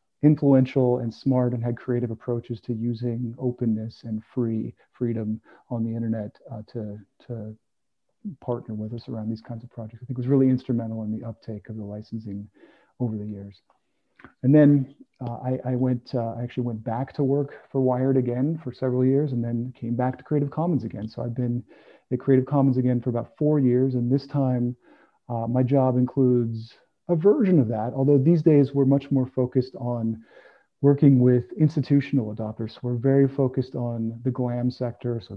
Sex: male